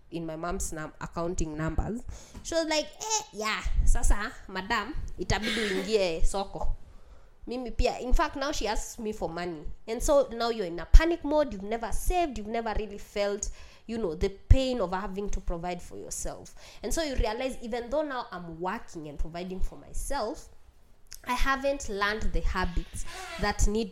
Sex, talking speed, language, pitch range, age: female, 175 wpm, English, 175-235 Hz, 20-39